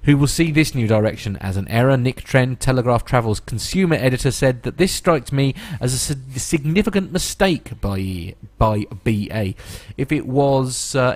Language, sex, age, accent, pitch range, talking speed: English, male, 30-49, British, 100-135 Hz, 165 wpm